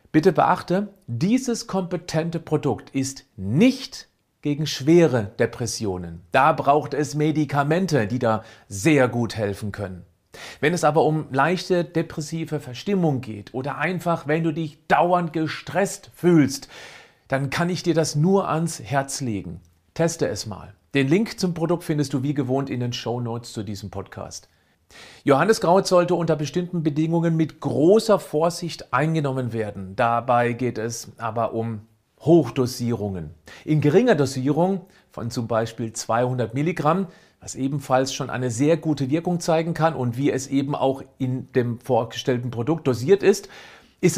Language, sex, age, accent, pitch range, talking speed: German, male, 40-59, German, 120-165 Hz, 150 wpm